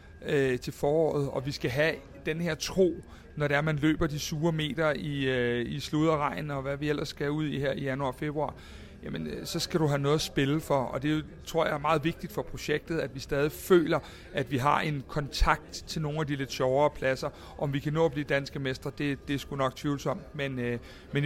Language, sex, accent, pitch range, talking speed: Danish, male, native, 135-155 Hz, 245 wpm